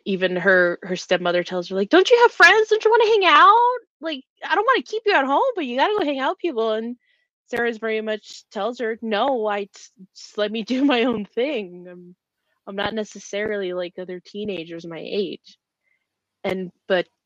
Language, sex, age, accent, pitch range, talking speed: English, female, 20-39, American, 180-260 Hz, 210 wpm